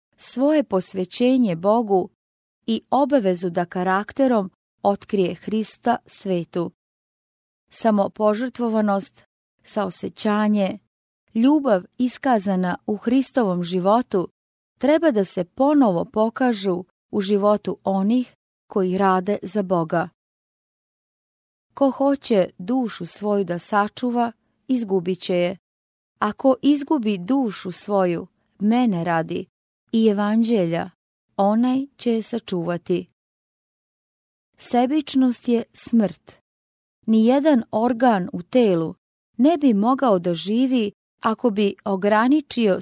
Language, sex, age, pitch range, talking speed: English, female, 30-49, 185-245 Hz, 90 wpm